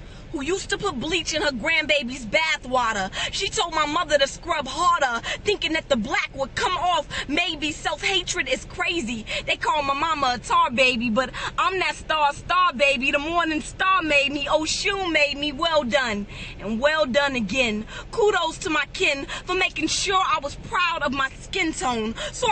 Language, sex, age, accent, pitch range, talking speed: English, female, 20-39, American, 260-340 Hz, 190 wpm